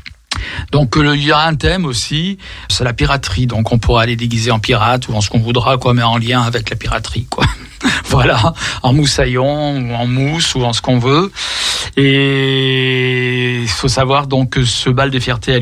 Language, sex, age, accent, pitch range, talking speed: French, male, 60-79, French, 120-140 Hz, 200 wpm